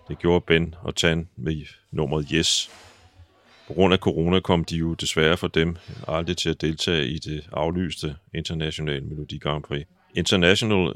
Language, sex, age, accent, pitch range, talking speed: Danish, male, 30-49, native, 75-85 Hz, 165 wpm